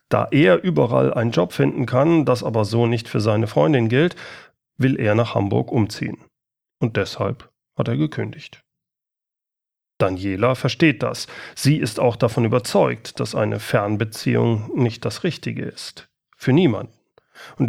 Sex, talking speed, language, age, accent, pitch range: male, 145 wpm, German, 40-59, German, 115-150 Hz